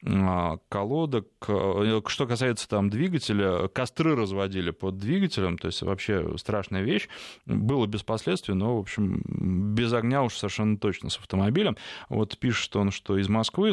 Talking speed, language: 145 wpm, Russian